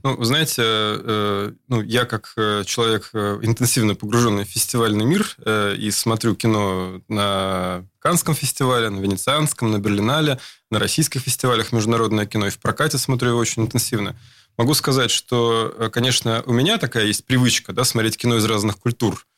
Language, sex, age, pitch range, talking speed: Russian, male, 20-39, 105-130 Hz, 160 wpm